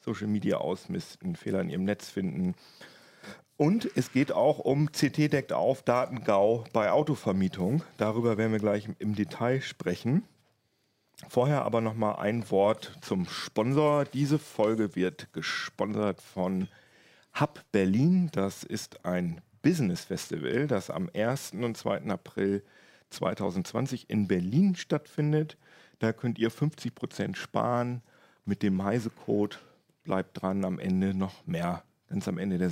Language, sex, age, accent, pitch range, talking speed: German, male, 40-59, German, 105-140 Hz, 135 wpm